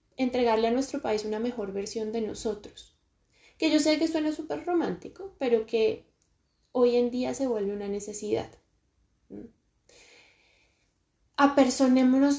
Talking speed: 130 wpm